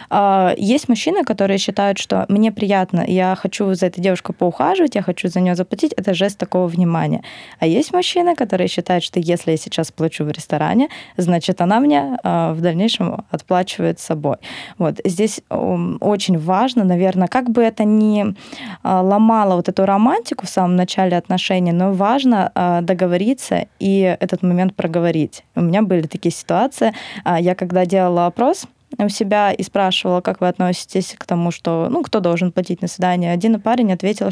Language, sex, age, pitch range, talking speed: Russian, female, 20-39, 180-225 Hz, 165 wpm